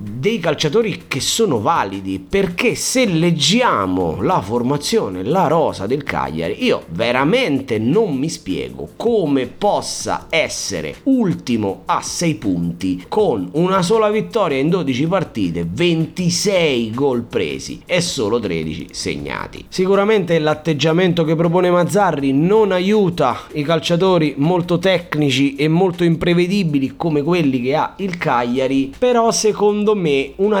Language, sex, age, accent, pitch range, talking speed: Italian, male, 30-49, native, 130-200 Hz, 125 wpm